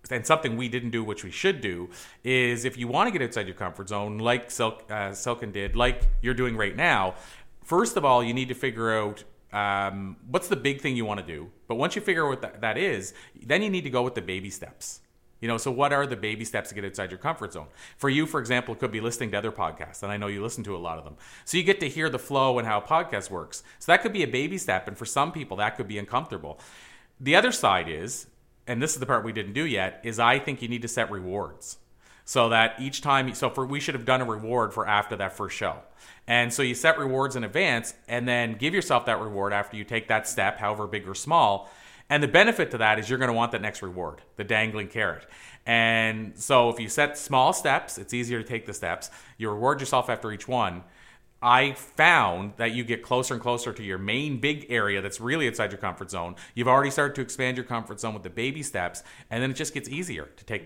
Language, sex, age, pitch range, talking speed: English, male, 30-49, 105-130 Hz, 255 wpm